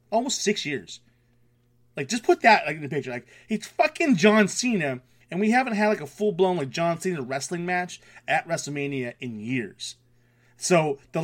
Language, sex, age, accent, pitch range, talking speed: English, male, 30-49, American, 120-170 Hz, 180 wpm